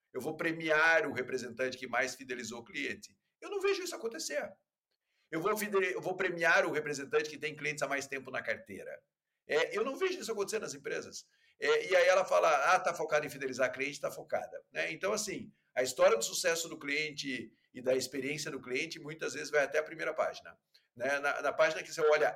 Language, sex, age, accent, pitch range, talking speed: Portuguese, male, 50-69, Brazilian, 135-210 Hz, 215 wpm